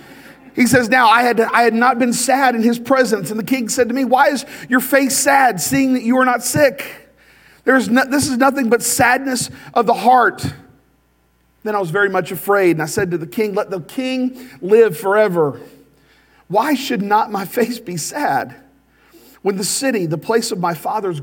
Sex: male